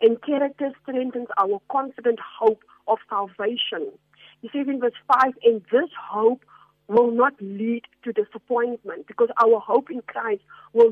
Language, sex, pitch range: English, female, 205-255 Hz